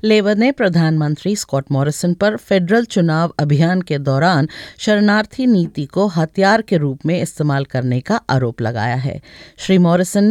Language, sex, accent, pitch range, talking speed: English, female, Indian, 160-225 Hz, 150 wpm